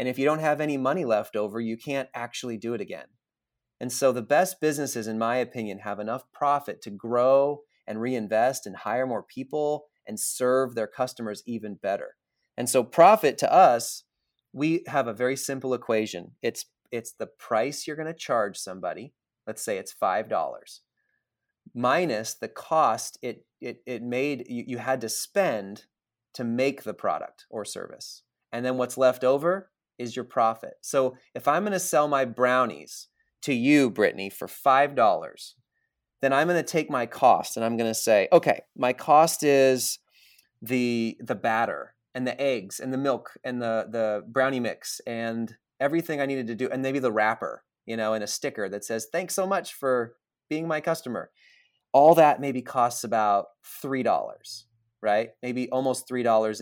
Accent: American